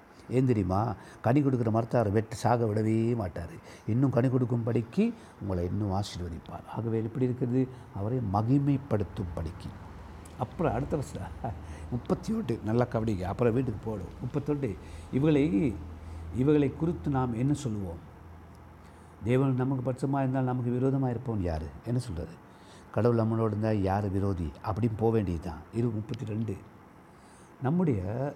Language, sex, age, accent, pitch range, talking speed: Tamil, male, 60-79, native, 95-135 Hz, 125 wpm